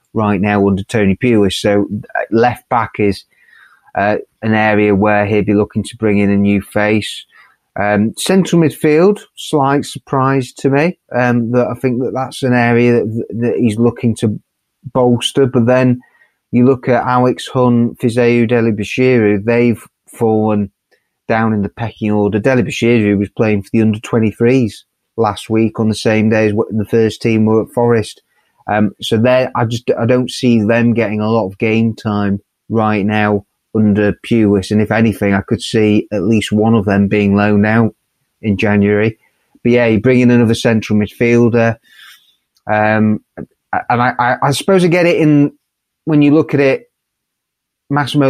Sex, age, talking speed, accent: male, 30-49, 170 wpm, British